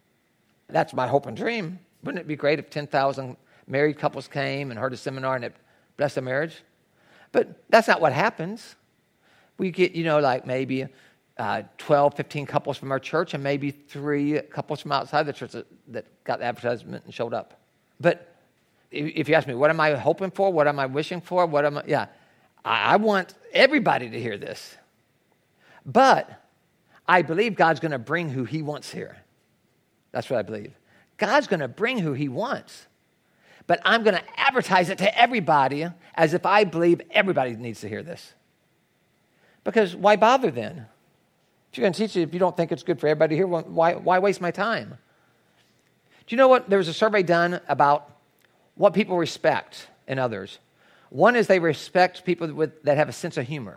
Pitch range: 145-185 Hz